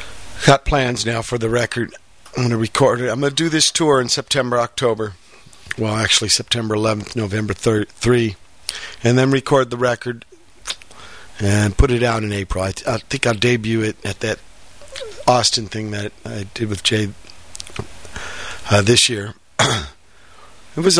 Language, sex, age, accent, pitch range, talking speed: English, male, 50-69, American, 100-125 Hz, 170 wpm